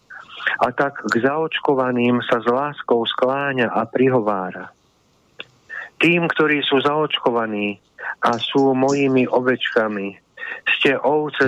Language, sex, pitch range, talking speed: Slovak, male, 120-140 Hz, 105 wpm